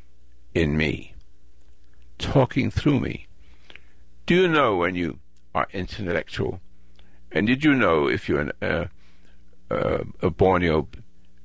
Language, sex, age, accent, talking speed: English, male, 60-79, American, 120 wpm